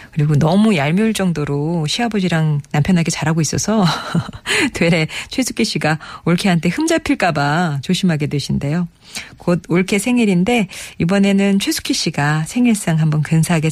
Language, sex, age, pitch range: Korean, female, 40-59, 150-215 Hz